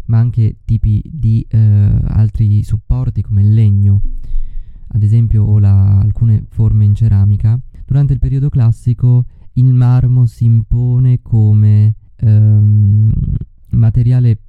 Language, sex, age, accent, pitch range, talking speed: Italian, male, 20-39, native, 105-120 Hz, 115 wpm